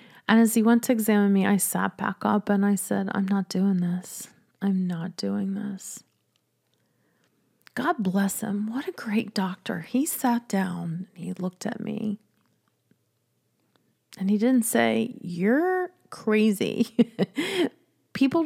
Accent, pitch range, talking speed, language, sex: American, 185-230 Hz, 140 wpm, English, female